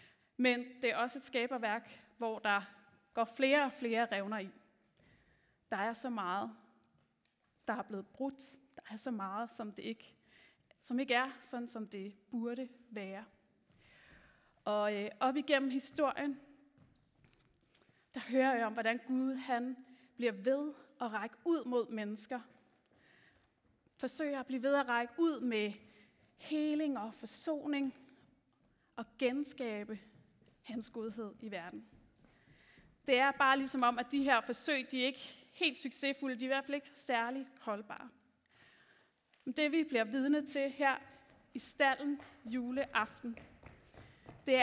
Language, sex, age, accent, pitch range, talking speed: Danish, female, 30-49, native, 225-275 Hz, 140 wpm